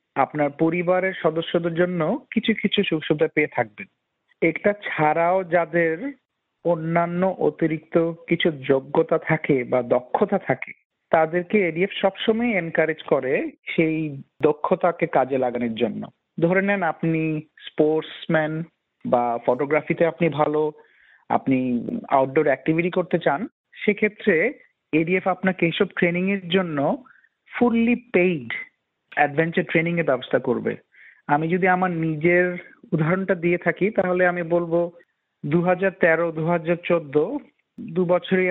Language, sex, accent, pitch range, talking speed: Bengali, male, native, 150-180 Hz, 115 wpm